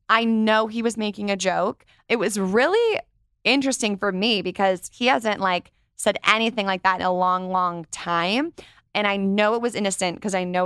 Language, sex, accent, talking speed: English, female, American, 195 wpm